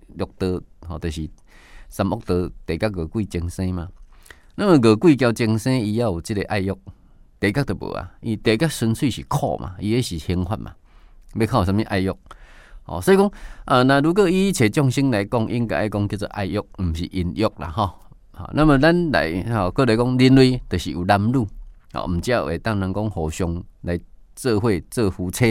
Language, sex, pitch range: Chinese, male, 90-125 Hz